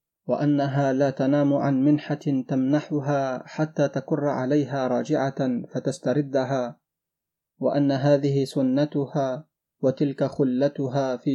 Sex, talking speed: male, 90 wpm